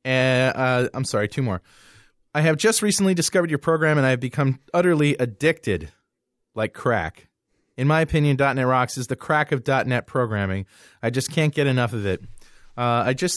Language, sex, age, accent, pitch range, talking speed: English, male, 30-49, American, 115-150 Hz, 185 wpm